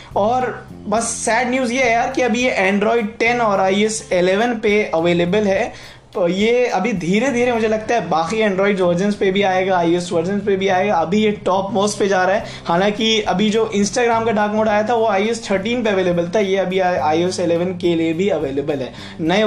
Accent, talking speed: native, 215 wpm